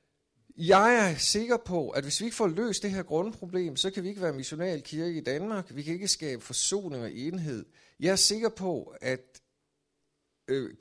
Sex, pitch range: male, 115-175 Hz